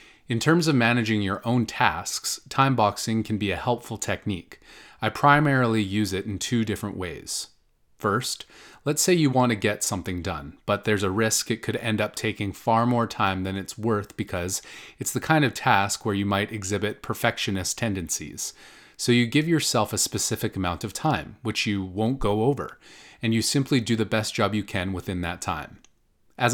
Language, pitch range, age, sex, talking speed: English, 100-120 Hz, 30-49, male, 190 wpm